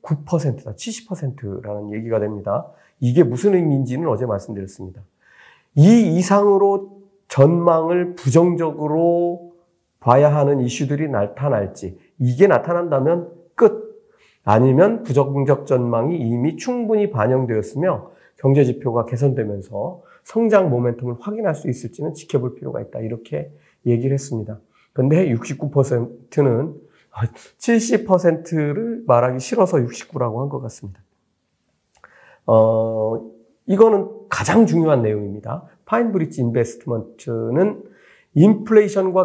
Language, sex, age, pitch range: Korean, male, 40-59, 115-175 Hz